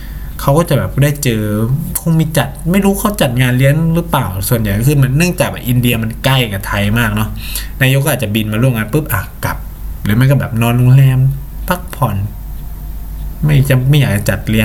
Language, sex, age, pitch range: Thai, male, 20-39, 105-135 Hz